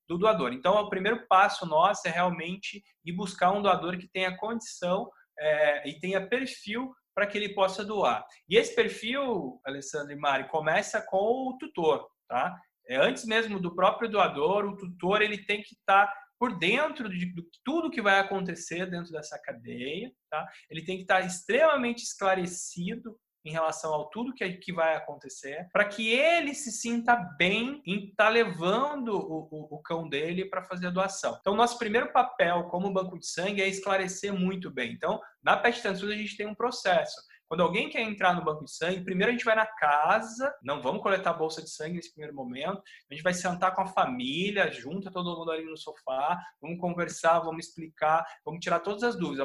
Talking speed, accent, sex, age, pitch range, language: 195 wpm, Brazilian, male, 20-39, 160-215 Hz, Portuguese